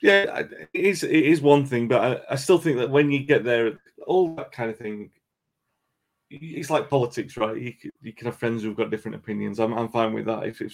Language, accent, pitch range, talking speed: English, British, 105-125 Hz, 200 wpm